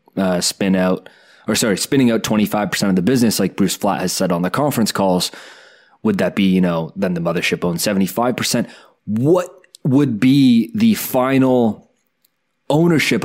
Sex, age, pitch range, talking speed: male, 20-39, 100-130 Hz, 180 wpm